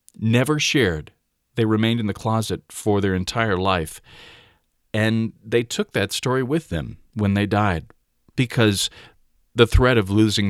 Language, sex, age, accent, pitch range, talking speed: English, male, 40-59, American, 90-120 Hz, 150 wpm